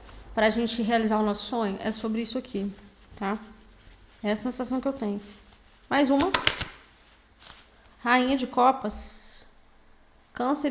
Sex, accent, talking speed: female, Brazilian, 135 wpm